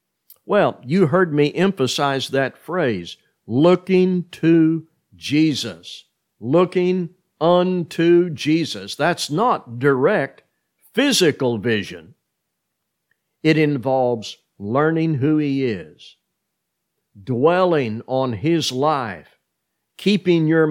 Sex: male